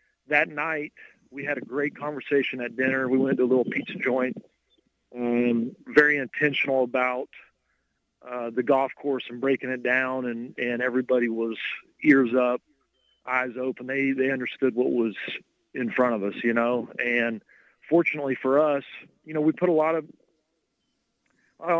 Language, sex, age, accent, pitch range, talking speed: English, male, 40-59, American, 120-140 Hz, 160 wpm